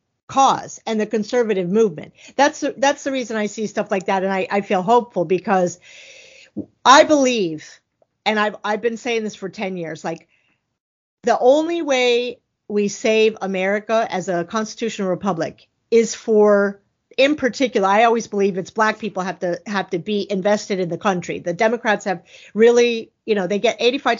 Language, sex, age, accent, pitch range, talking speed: English, female, 50-69, American, 195-235 Hz, 175 wpm